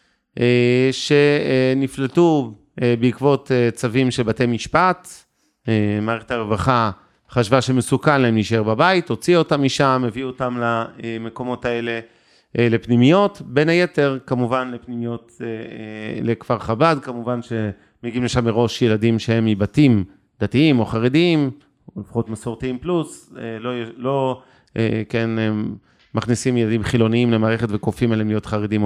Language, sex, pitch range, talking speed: Hebrew, male, 115-135 Hz, 125 wpm